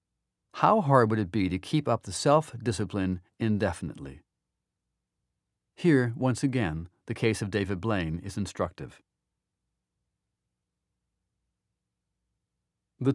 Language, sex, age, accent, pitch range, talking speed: English, male, 40-59, American, 95-130 Hz, 100 wpm